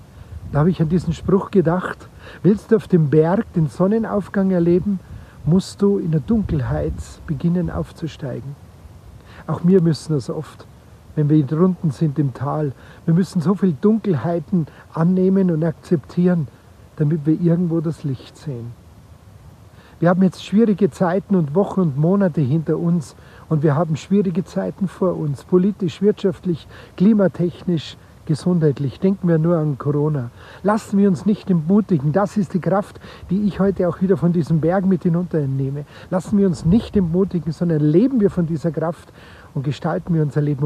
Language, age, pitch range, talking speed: German, 60-79, 145-185 Hz, 160 wpm